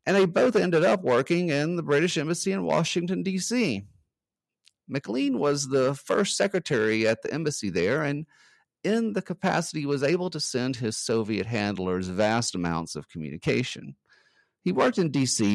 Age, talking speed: 50-69, 160 wpm